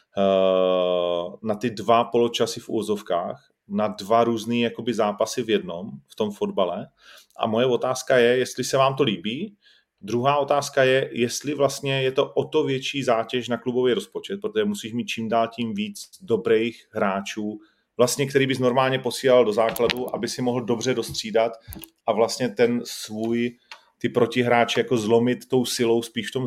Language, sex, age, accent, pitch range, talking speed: Czech, male, 30-49, native, 110-130 Hz, 165 wpm